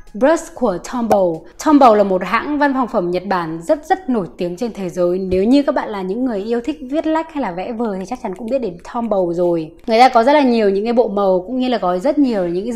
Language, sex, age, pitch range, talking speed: Vietnamese, female, 20-39, 185-255 Hz, 280 wpm